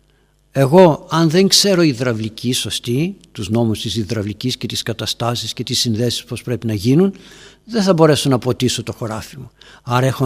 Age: 60-79